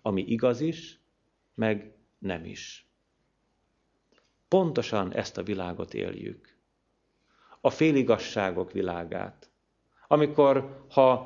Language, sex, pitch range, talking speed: Hungarian, male, 105-135 Hz, 85 wpm